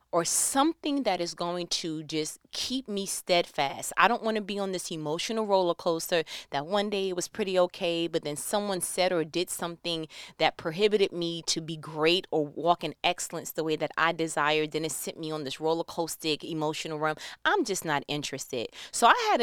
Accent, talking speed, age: American, 200 wpm, 30-49